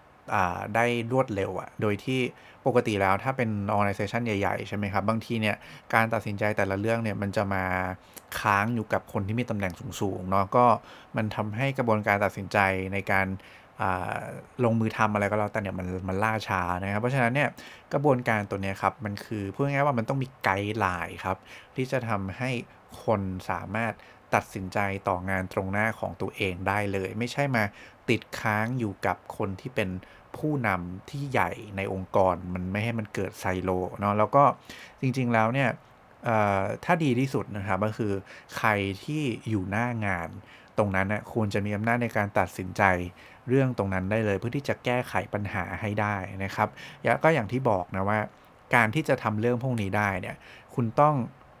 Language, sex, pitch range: English, male, 95-120 Hz